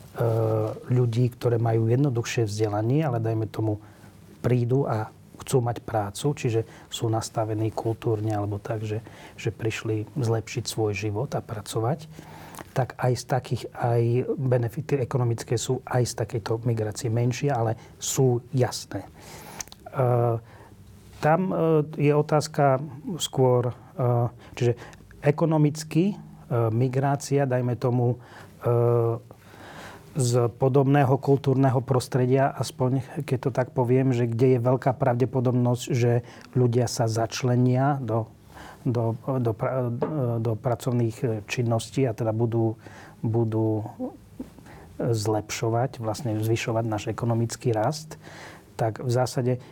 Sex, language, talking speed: male, Slovak, 110 wpm